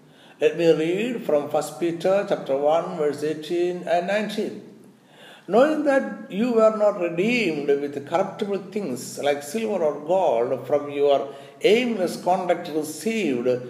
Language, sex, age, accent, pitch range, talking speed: Malayalam, male, 60-79, native, 145-215 Hz, 130 wpm